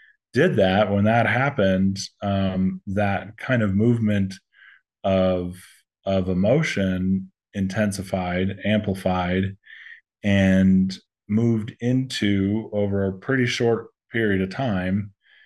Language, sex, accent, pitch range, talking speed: English, male, American, 95-110 Hz, 95 wpm